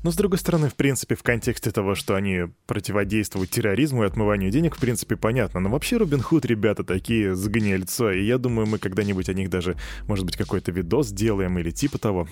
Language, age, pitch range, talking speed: Russian, 20-39, 100-135 Hz, 205 wpm